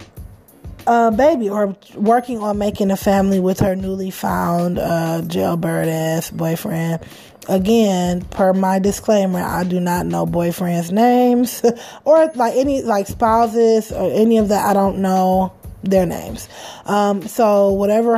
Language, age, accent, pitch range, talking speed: English, 20-39, American, 185-225 Hz, 140 wpm